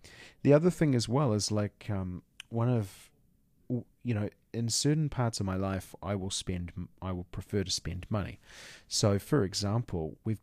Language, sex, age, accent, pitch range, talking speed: English, male, 30-49, Australian, 95-115 Hz, 180 wpm